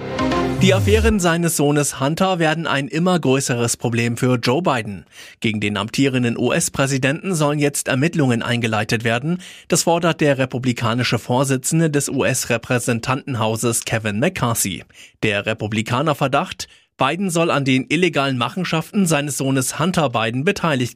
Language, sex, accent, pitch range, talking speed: German, male, German, 120-160 Hz, 125 wpm